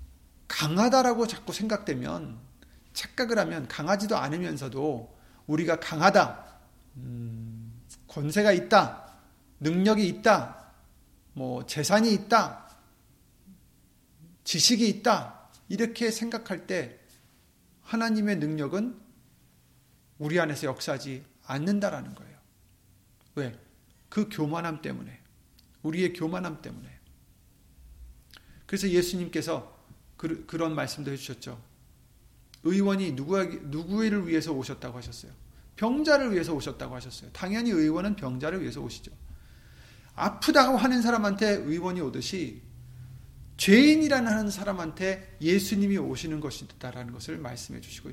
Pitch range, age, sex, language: 125-205 Hz, 40-59, male, Korean